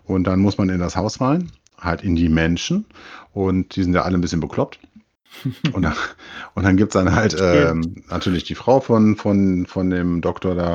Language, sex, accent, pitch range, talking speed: German, male, German, 85-105 Hz, 210 wpm